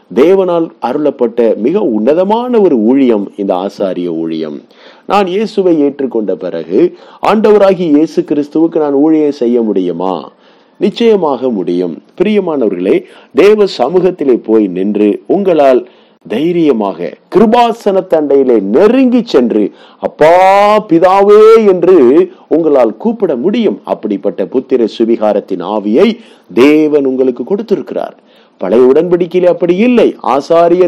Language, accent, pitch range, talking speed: English, Indian, 140-215 Hz, 105 wpm